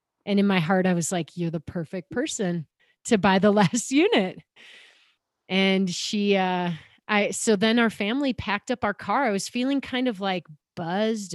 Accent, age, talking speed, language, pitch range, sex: American, 30-49, 185 wpm, English, 185-240 Hz, female